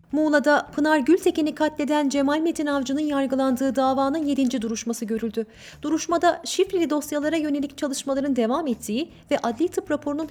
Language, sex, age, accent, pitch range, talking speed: Turkish, female, 30-49, native, 250-320 Hz, 135 wpm